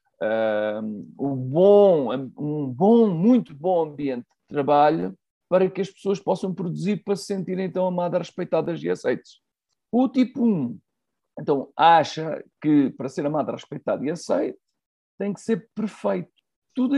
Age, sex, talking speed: 50-69, male, 140 wpm